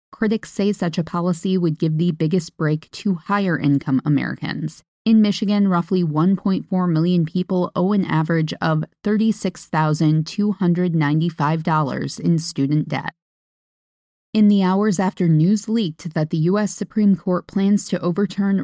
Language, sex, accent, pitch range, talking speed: English, female, American, 160-200 Hz, 130 wpm